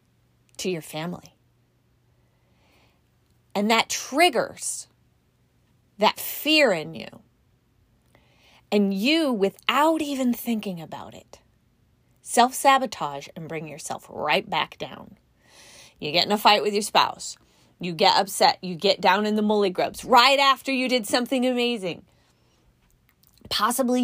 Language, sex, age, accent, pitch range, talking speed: English, female, 30-49, American, 195-270 Hz, 120 wpm